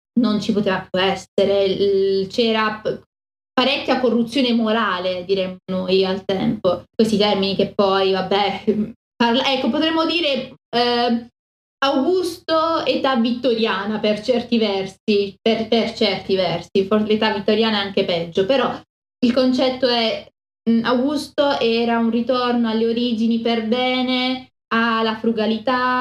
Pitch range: 200-245 Hz